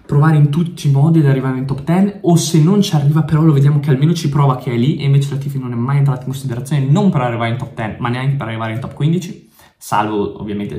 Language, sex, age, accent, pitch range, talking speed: Italian, male, 20-39, native, 115-150 Hz, 280 wpm